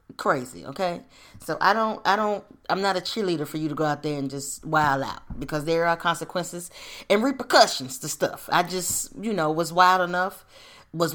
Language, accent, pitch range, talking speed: English, American, 155-215 Hz, 200 wpm